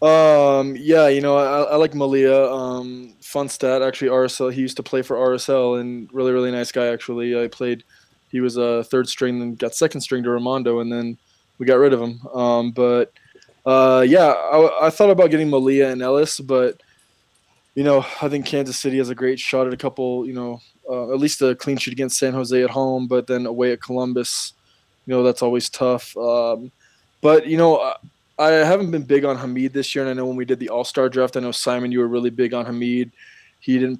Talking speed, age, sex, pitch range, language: 225 wpm, 20-39, male, 125-135 Hz, English